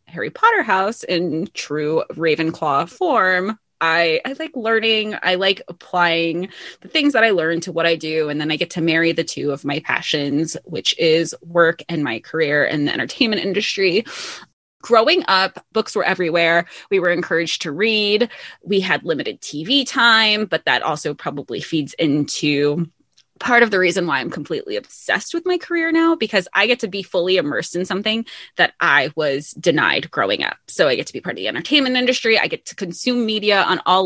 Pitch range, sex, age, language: 165-215 Hz, female, 20-39, English